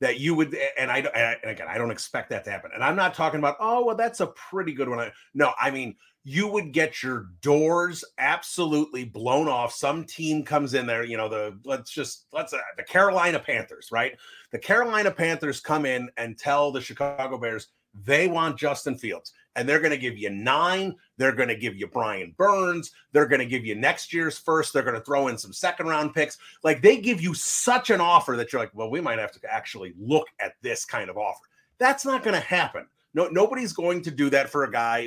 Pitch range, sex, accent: 130-180 Hz, male, American